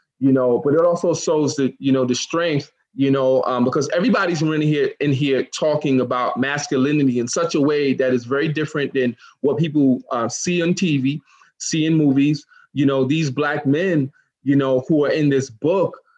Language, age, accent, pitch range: English, 20-39, American, 130-160 Hz